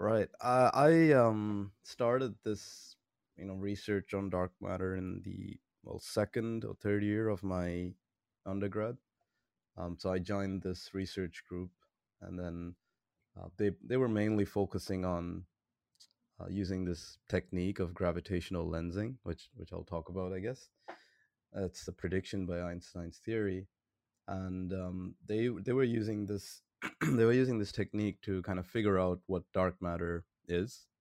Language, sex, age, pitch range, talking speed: English, male, 20-39, 90-110 Hz, 155 wpm